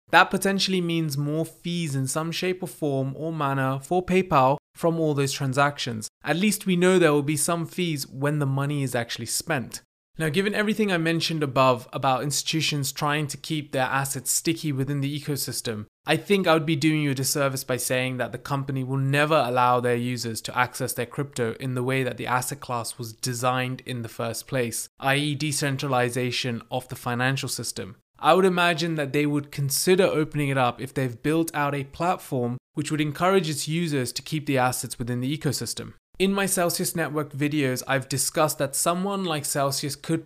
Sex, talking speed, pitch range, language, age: male, 195 wpm, 130-160 Hz, English, 20-39